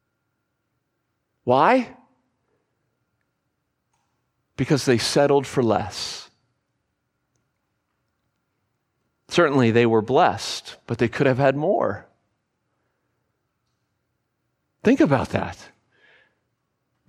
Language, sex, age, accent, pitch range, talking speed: English, male, 40-59, American, 130-180 Hz, 70 wpm